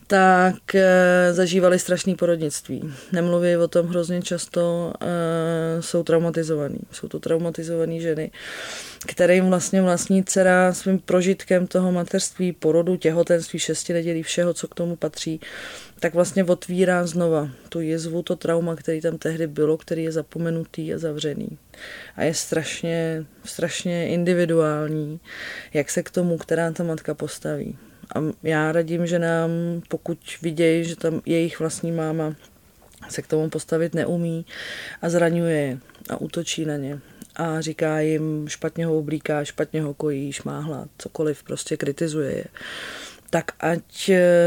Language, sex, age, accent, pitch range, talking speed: Czech, female, 20-39, native, 155-175 Hz, 140 wpm